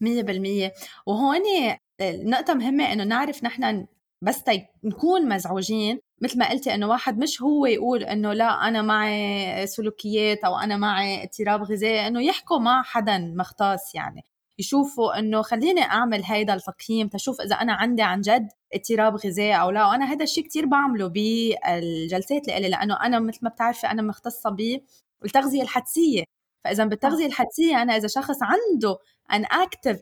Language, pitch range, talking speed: Arabic, 200-255 Hz, 155 wpm